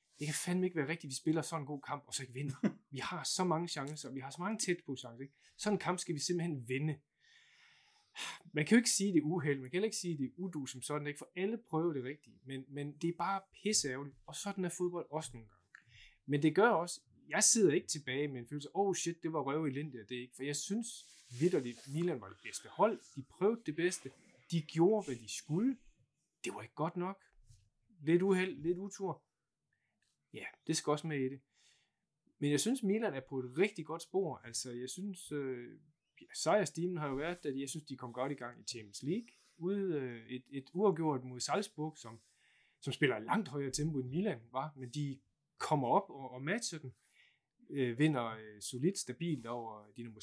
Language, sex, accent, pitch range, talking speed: Danish, male, native, 130-180 Hz, 235 wpm